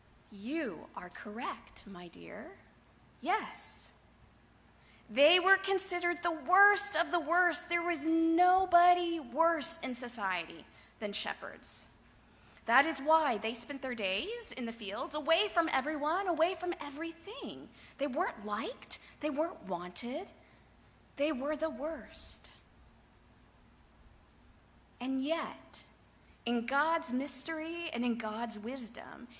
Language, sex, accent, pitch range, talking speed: English, female, American, 225-330 Hz, 115 wpm